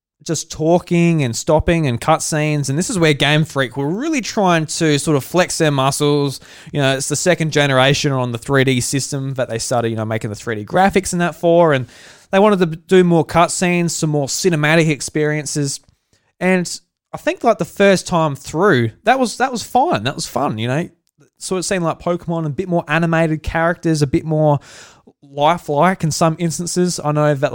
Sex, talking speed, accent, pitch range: male, 205 wpm, Australian, 130-175 Hz